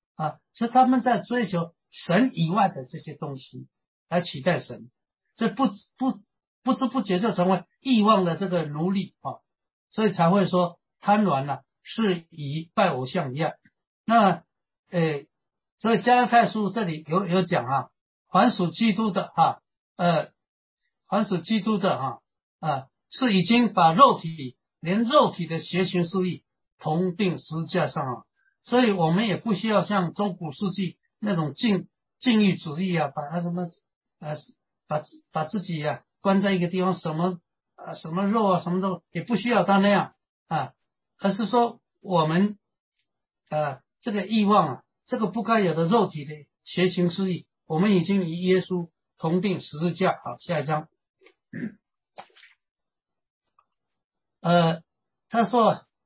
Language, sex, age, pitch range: English, male, 60-79, 165-220 Hz